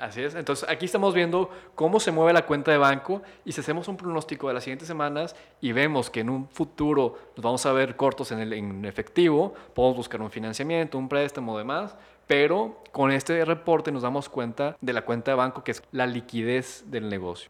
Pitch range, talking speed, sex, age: 120-150 Hz, 215 wpm, male, 20-39